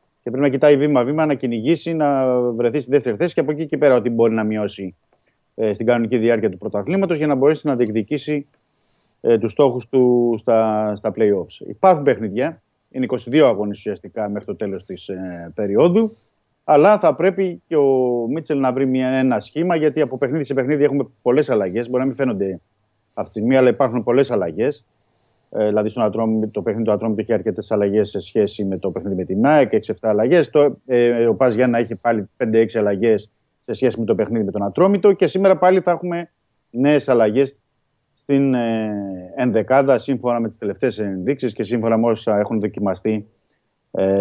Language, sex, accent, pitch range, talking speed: Greek, male, native, 110-140 Hz, 185 wpm